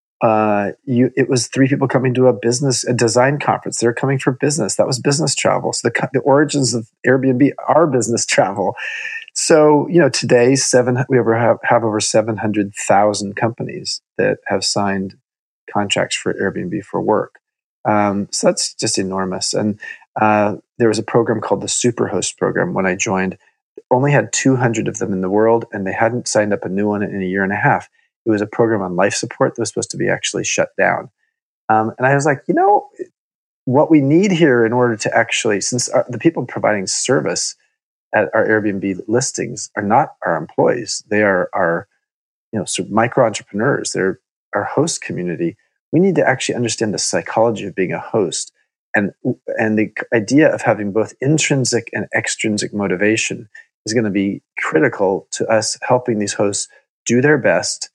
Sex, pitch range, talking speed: male, 105-135 Hz, 185 wpm